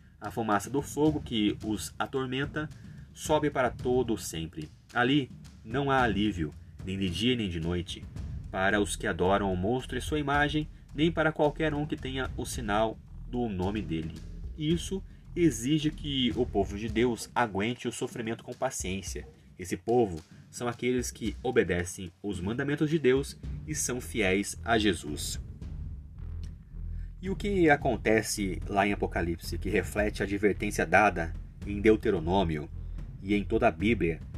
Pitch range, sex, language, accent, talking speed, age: 85-130 Hz, male, Portuguese, Brazilian, 155 wpm, 30-49